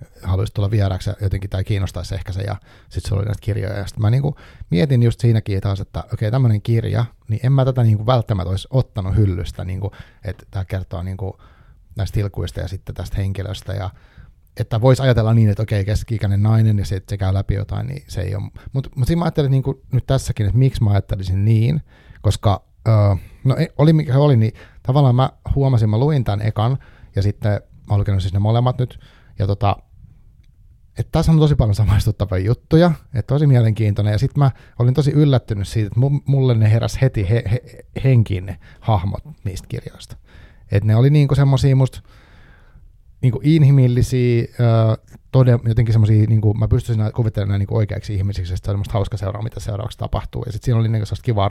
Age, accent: 30-49, native